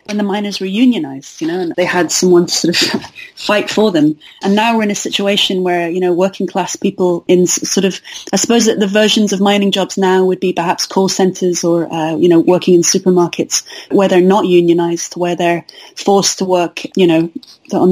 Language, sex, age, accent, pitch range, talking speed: English, female, 30-49, British, 175-205 Hz, 220 wpm